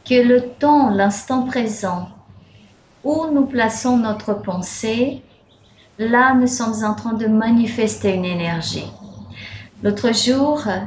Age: 30-49